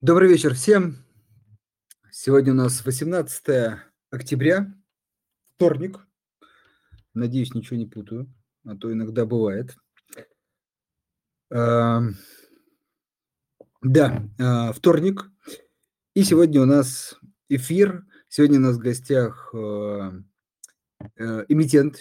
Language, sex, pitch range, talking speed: Russian, male, 110-145 Hz, 80 wpm